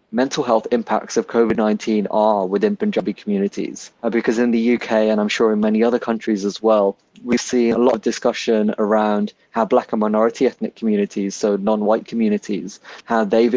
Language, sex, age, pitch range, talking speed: Punjabi, male, 20-39, 105-120 Hz, 175 wpm